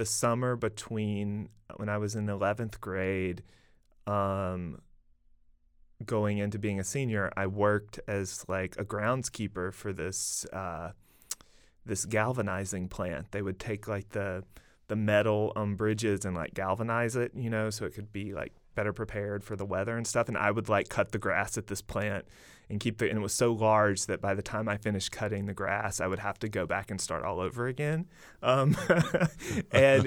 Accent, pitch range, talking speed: American, 100-120 Hz, 190 wpm